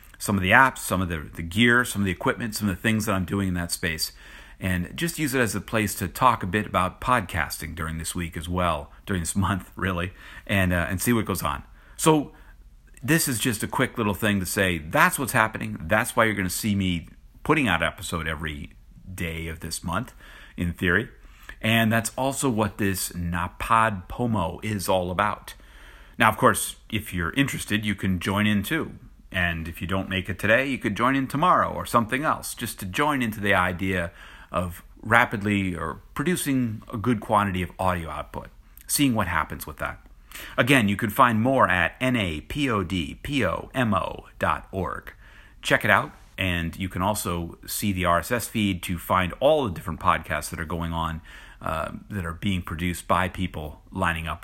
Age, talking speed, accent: 50-69, 195 wpm, American